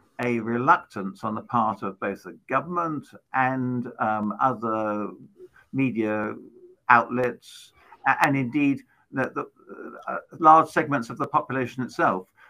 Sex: male